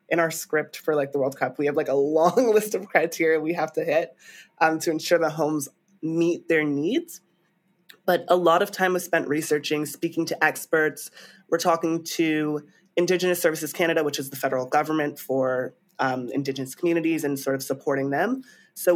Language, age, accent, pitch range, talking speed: English, 20-39, American, 145-175 Hz, 190 wpm